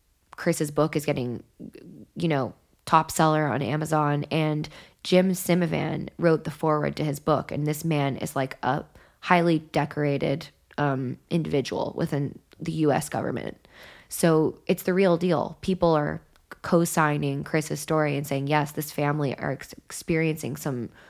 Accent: American